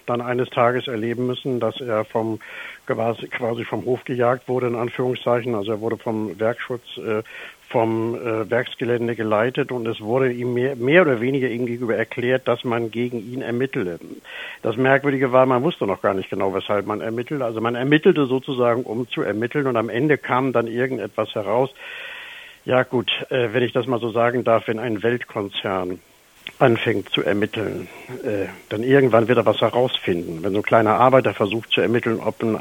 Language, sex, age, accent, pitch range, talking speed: German, male, 60-79, German, 115-130 Hz, 180 wpm